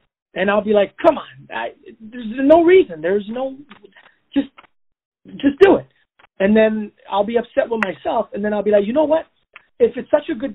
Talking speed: 205 wpm